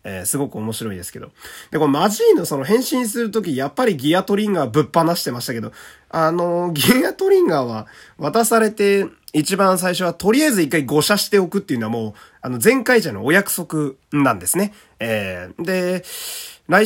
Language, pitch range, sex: Japanese, 115-195 Hz, male